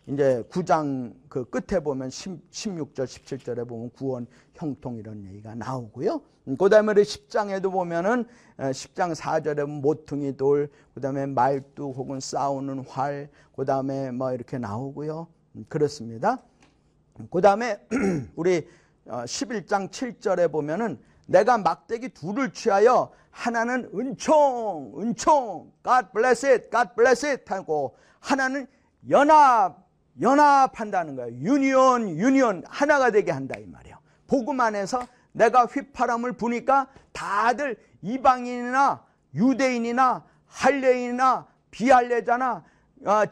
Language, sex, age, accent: Korean, male, 40-59, native